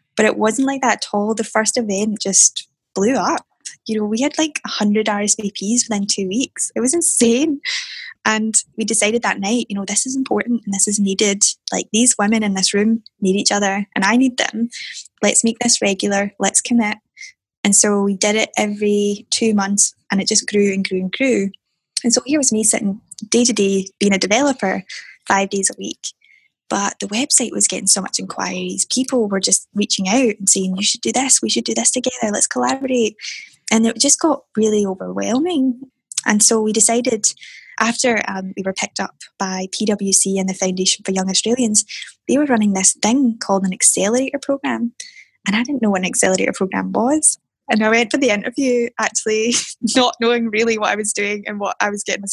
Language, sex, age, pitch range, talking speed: English, female, 10-29, 195-240 Hz, 205 wpm